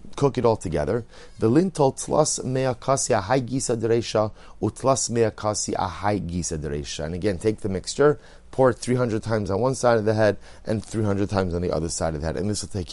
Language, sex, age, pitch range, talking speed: English, male, 30-49, 95-125 Hz, 160 wpm